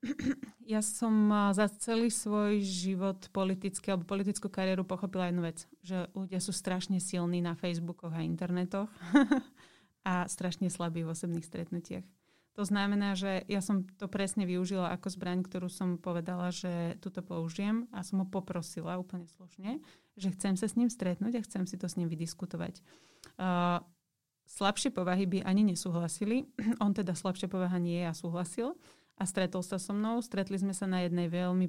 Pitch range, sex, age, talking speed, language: 175-200 Hz, female, 30-49, 165 wpm, Slovak